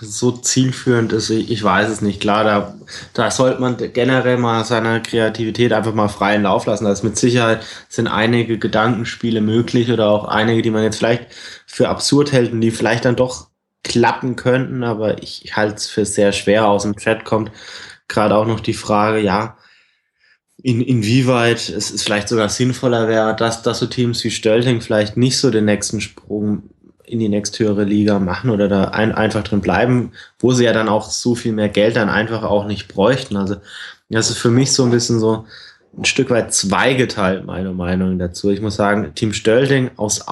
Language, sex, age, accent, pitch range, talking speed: German, male, 20-39, German, 105-120 Hz, 190 wpm